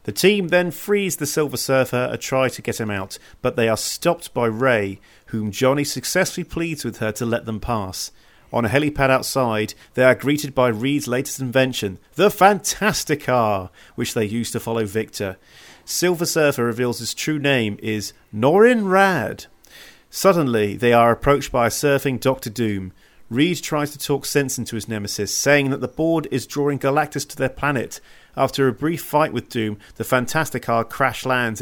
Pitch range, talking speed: 115-145 Hz, 175 wpm